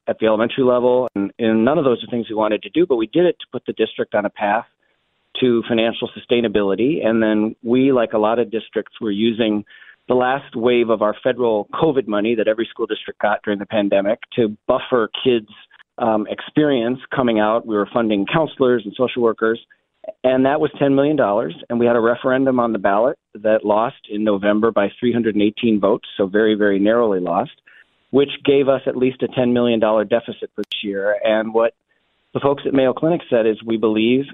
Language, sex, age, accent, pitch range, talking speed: English, male, 40-59, American, 105-125 Hz, 205 wpm